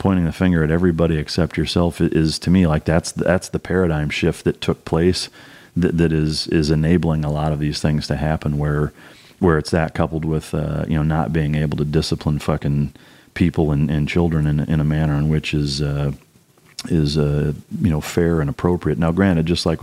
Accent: American